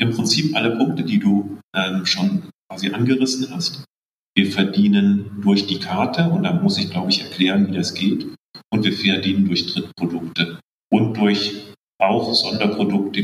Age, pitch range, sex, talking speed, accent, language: 40-59, 95-110 Hz, male, 160 wpm, German, German